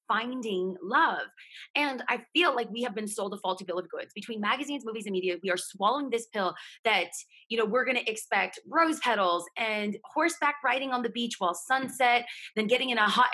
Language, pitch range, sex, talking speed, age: English, 190-260 Hz, female, 205 wpm, 20-39